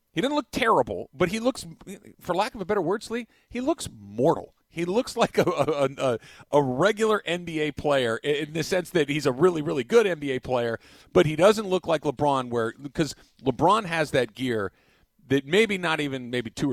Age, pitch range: 40-59, 130-175 Hz